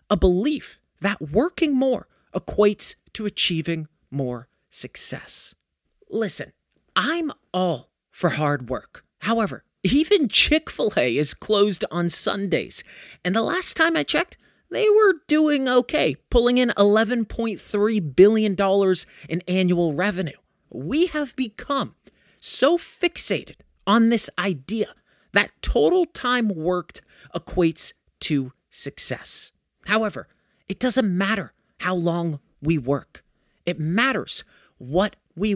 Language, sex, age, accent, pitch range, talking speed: English, male, 30-49, American, 165-250 Hz, 115 wpm